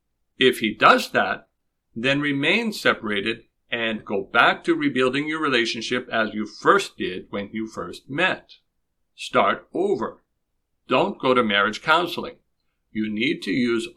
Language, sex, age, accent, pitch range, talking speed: English, male, 60-79, American, 110-130 Hz, 140 wpm